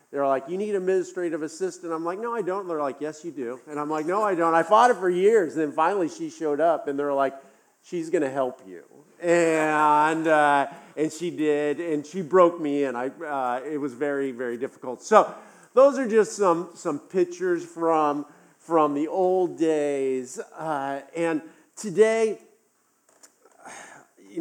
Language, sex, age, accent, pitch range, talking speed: English, male, 50-69, American, 130-165 Hz, 180 wpm